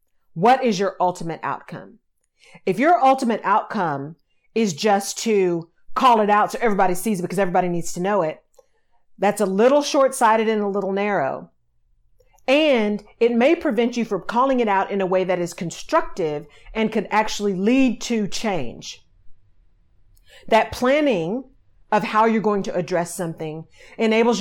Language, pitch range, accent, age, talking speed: English, 175-235 Hz, American, 40-59, 155 wpm